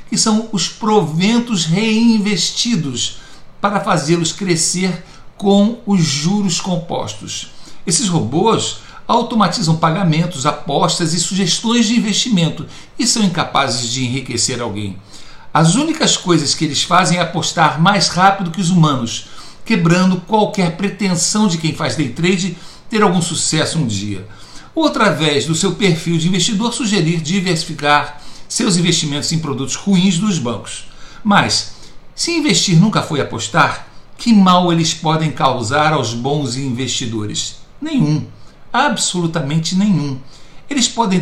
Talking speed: 130 wpm